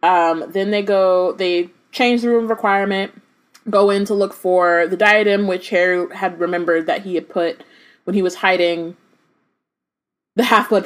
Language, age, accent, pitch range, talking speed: English, 20-39, American, 170-240 Hz, 165 wpm